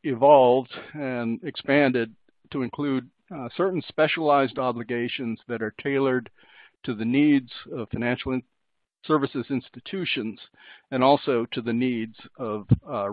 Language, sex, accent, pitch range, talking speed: English, male, American, 115-145 Hz, 120 wpm